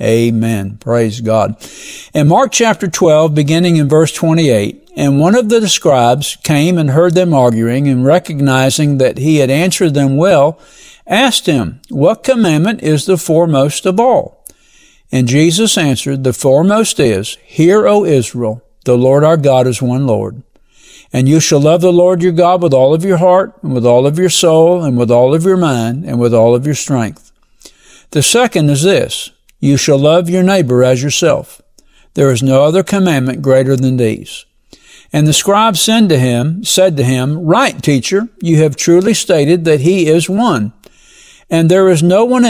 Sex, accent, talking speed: male, American, 175 wpm